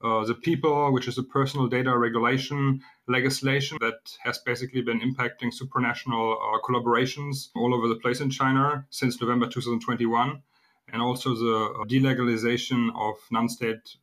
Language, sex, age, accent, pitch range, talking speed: English, male, 30-49, German, 115-130 Hz, 145 wpm